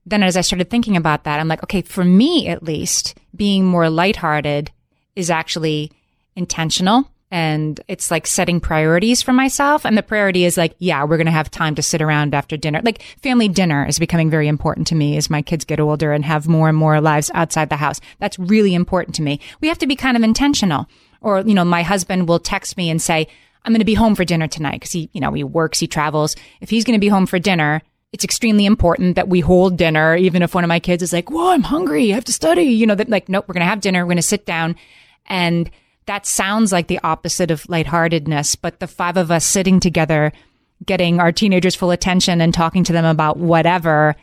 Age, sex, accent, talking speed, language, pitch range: 30-49, female, American, 235 wpm, English, 160-195 Hz